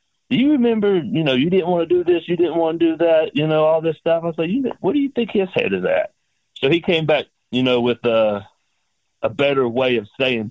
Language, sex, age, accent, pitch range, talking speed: English, male, 40-59, American, 120-165 Hz, 265 wpm